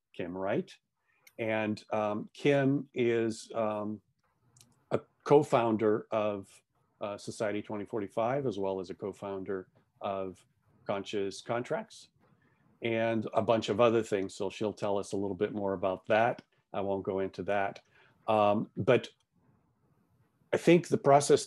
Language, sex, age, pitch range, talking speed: English, male, 40-59, 100-125 Hz, 135 wpm